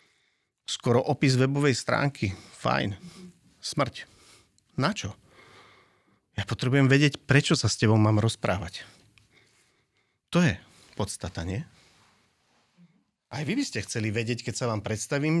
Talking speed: 115 wpm